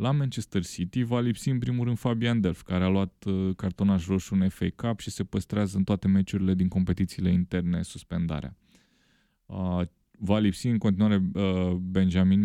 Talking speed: 160 wpm